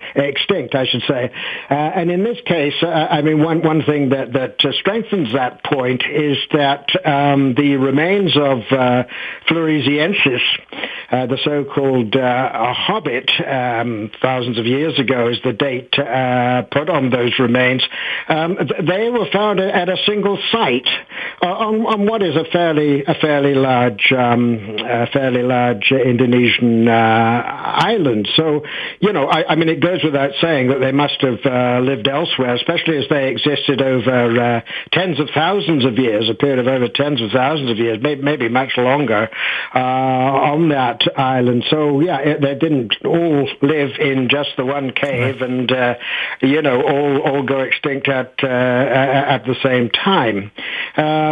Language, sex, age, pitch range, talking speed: English, male, 60-79, 125-155 Hz, 165 wpm